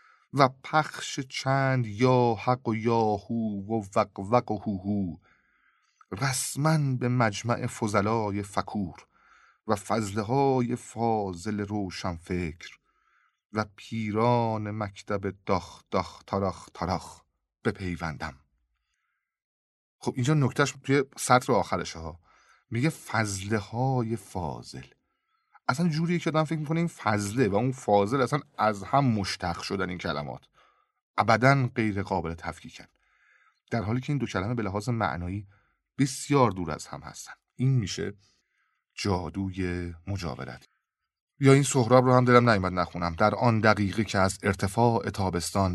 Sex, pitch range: male, 90-125 Hz